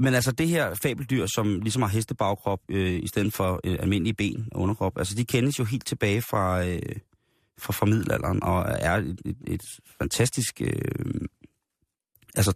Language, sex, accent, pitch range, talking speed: Danish, male, native, 95-115 Hz, 170 wpm